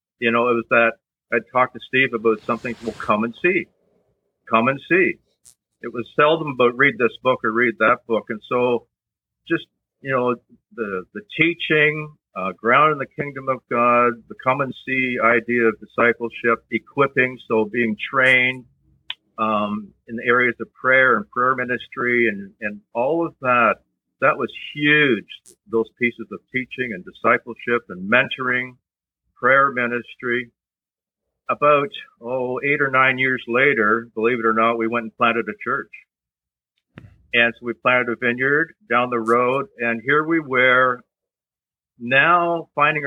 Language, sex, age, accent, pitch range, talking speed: English, male, 50-69, American, 115-135 Hz, 160 wpm